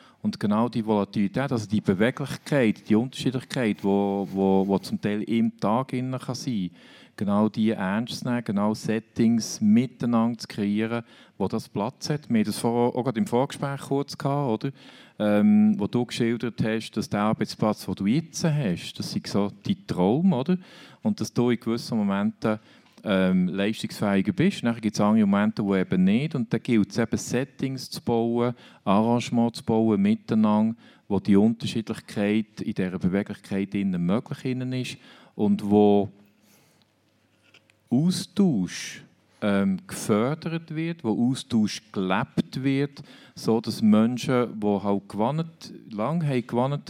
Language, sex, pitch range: German, male, 105-130 Hz